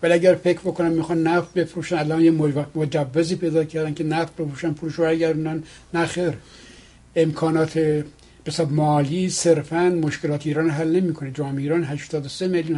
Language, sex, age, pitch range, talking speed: Persian, male, 60-79, 150-175 Hz, 145 wpm